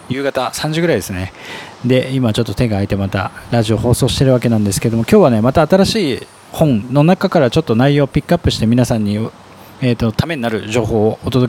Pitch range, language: 105-145 Hz, Japanese